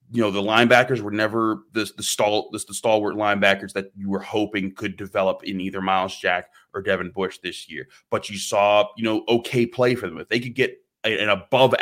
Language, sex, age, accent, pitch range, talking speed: English, male, 30-49, American, 100-115 Hz, 225 wpm